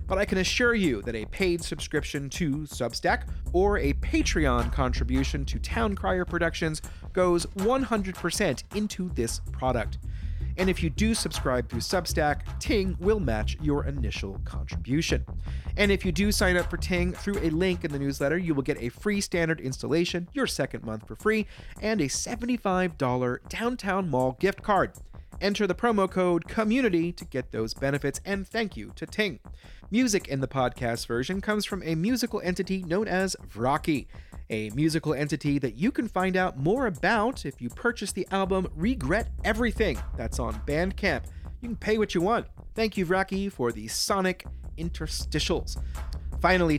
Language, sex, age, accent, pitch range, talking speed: English, male, 30-49, American, 120-195 Hz, 170 wpm